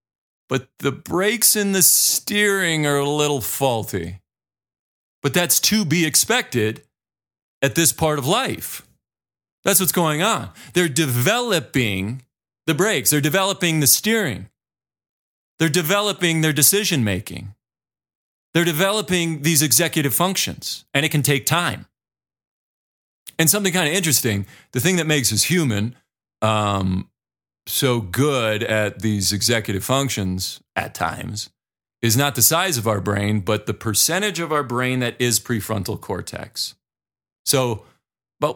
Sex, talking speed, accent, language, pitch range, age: male, 130 wpm, American, English, 110-165 Hz, 40-59